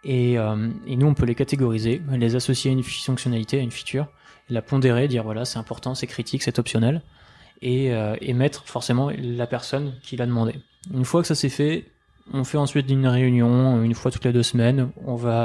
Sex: male